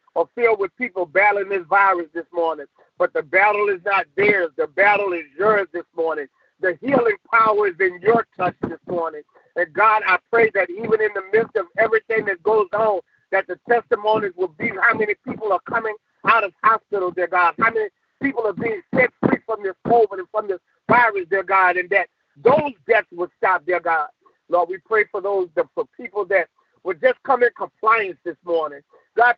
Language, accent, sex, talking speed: English, American, male, 200 wpm